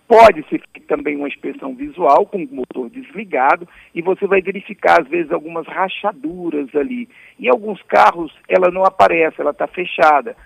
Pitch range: 170-220 Hz